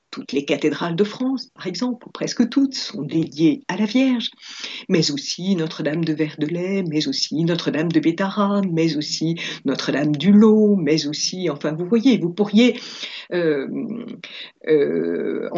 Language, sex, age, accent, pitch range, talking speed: French, female, 50-69, French, 165-250 Hz, 150 wpm